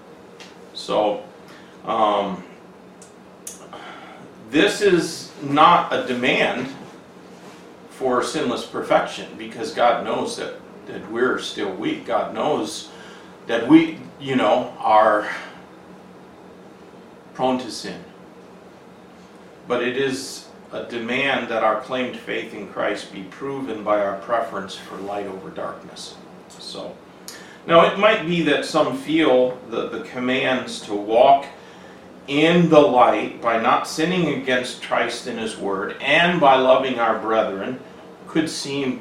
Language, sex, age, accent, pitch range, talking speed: English, male, 40-59, American, 115-160 Hz, 120 wpm